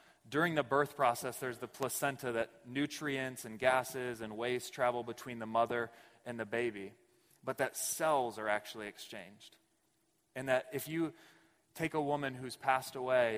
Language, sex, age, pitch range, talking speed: English, male, 20-39, 115-160 Hz, 160 wpm